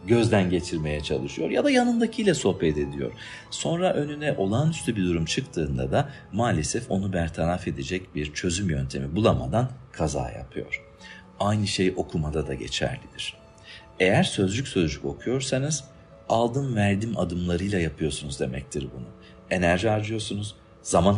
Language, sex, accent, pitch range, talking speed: Turkish, male, native, 90-135 Hz, 120 wpm